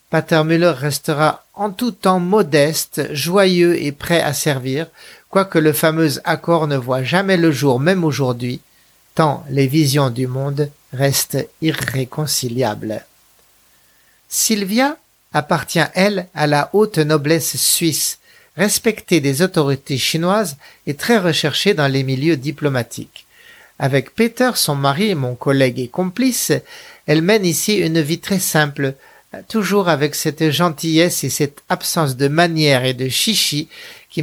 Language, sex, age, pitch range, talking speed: French, male, 50-69, 140-185 Hz, 135 wpm